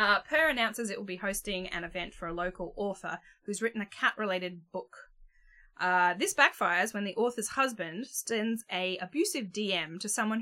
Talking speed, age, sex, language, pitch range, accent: 180 wpm, 10-29, female, English, 180-235 Hz, Australian